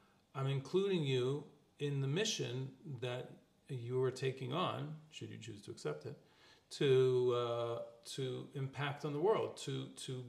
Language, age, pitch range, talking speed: English, 40-59, 120-140 Hz, 150 wpm